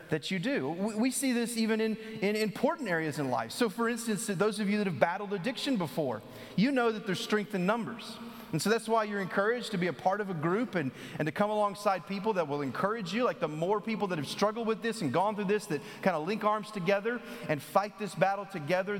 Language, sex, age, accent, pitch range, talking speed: English, male, 30-49, American, 175-235 Hz, 245 wpm